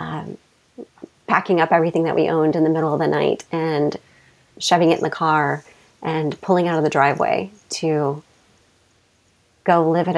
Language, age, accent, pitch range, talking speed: English, 30-49, American, 155-180 Hz, 170 wpm